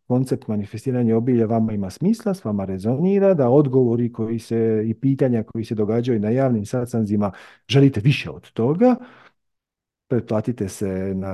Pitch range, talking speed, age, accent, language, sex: 105-135 Hz, 150 wpm, 50-69, Bosnian, Croatian, male